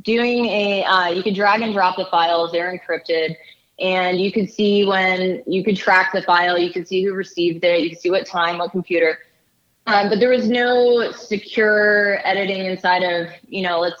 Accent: American